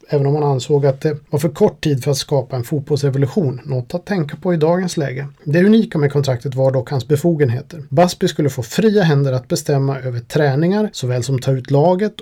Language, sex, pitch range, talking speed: Swedish, male, 135-165 Hz, 215 wpm